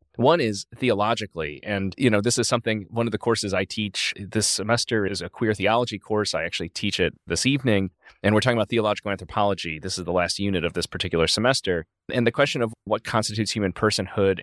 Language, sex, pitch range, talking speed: English, male, 95-115 Hz, 210 wpm